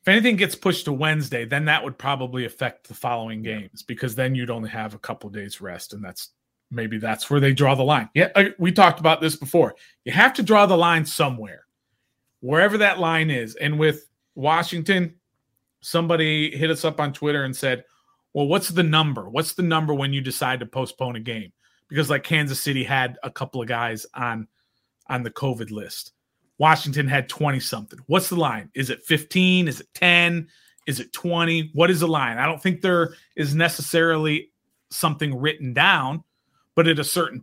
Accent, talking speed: American, 195 wpm